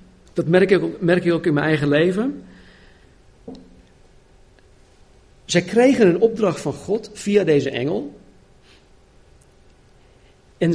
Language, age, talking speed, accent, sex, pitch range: Dutch, 50-69, 115 wpm, Dutch, male, 140-190 Hz